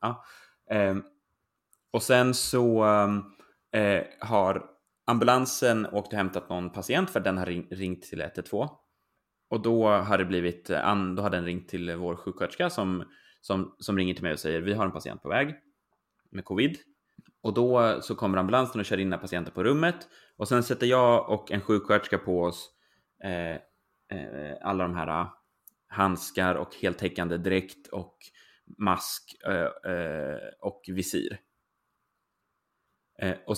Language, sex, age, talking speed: Swedish, male, 20-39, 145 wpm